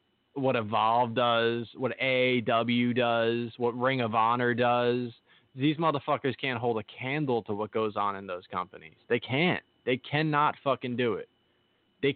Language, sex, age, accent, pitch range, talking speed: English, male, 20-39, American, 115-135 Hz, 165 wpm